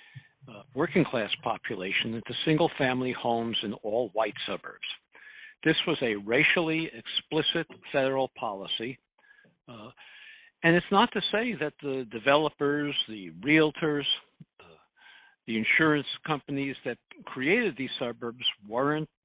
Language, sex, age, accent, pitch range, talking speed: English, male, 60-79, American, 120-165 Hz, 115 wpm